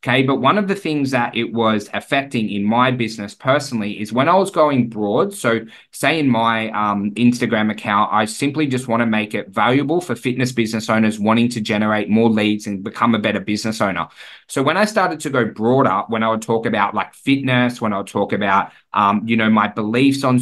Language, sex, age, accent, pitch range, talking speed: English, male, 20-39, Australian, 110-130 Hz, 220 wpm